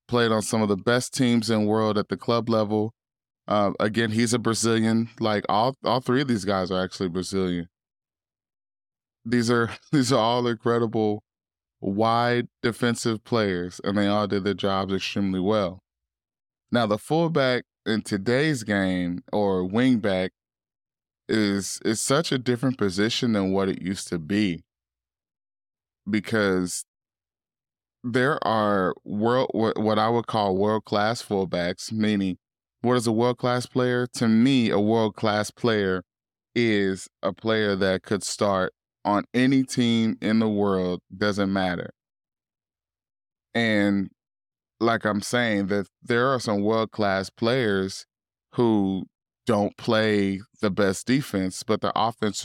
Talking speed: 140 wpm